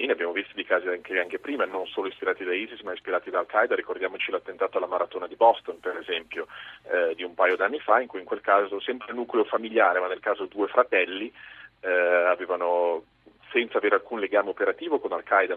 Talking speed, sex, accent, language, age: 210 wpm, male, native, Italian, 30-49